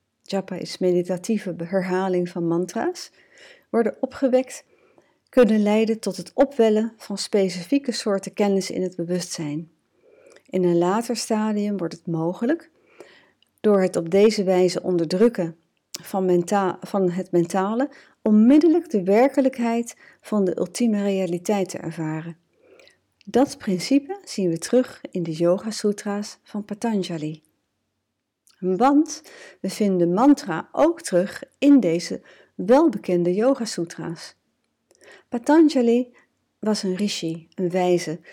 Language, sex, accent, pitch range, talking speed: English, female, Dutch, 175-240 Hz, 115 wpm